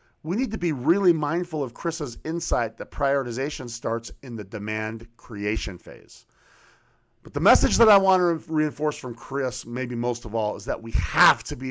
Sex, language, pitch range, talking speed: male, English, 115-155 Hz, 190 wpm